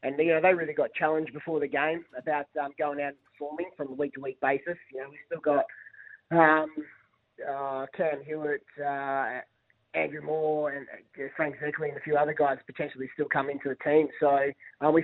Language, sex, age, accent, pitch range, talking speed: English, male, 20-39, Australian, 140-160 Hz, 200 wpm